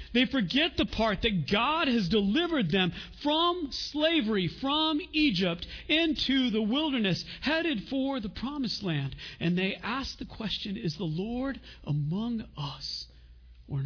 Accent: American